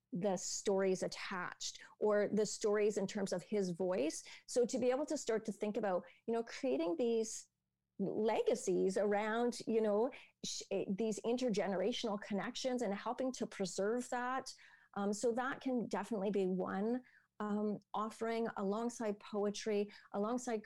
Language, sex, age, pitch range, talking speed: English, female, 30-49, 190-225 Hz, 140 wpm